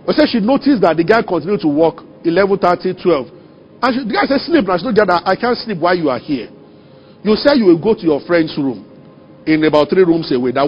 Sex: male